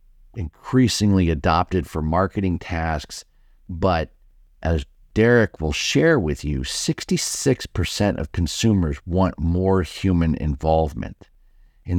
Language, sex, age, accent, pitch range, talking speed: English, male, 50-69, American, 80-100 Hz, 100 wpm